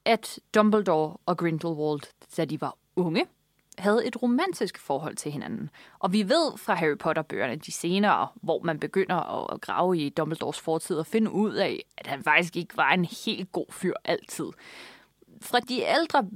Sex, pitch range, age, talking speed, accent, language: female, 165-215 Hz, 20-39, 170 wpm, native, Danish